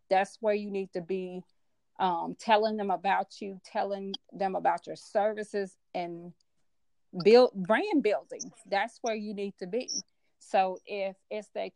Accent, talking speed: American, 155 wpm